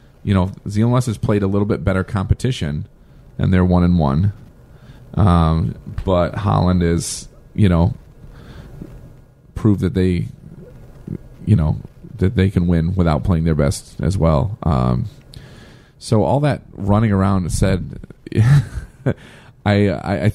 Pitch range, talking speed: 85-110 Hz, 135 wpm